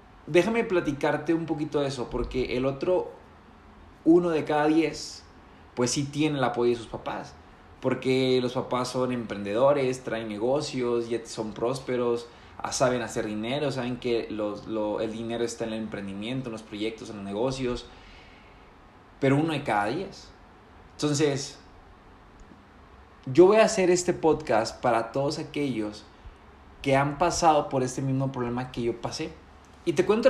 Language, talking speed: Spanish, 150 wpm